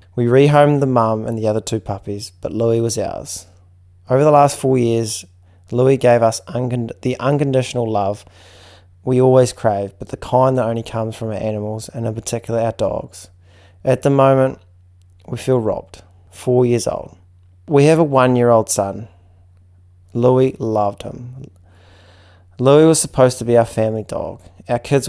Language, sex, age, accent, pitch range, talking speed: English, male, 20-39, Australian, 95-125 Hz, 170 wpm